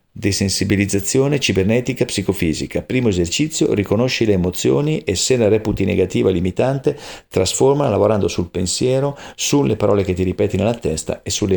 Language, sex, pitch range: Italian, male, 95-120 Hz